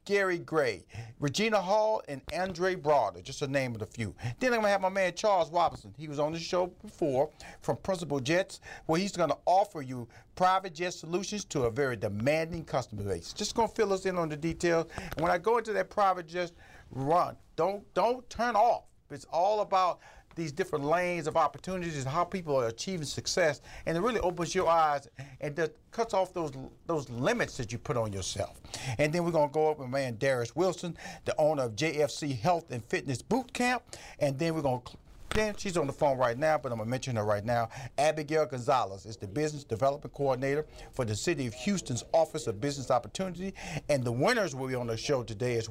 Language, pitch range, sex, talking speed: English, 135-195 Hz, male, 210 wpm